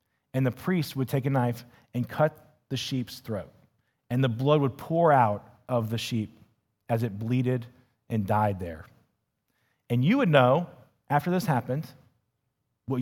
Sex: male